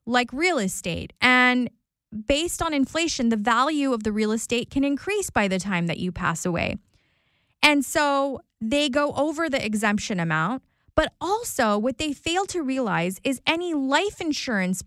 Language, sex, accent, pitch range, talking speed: English, female, American, 215-295 Hz, 165 wpm